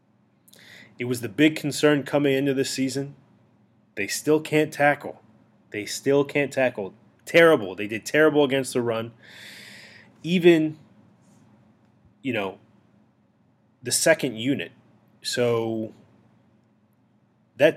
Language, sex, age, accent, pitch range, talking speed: English, male, 20-39, American, 110-130 Hz, 110 wpm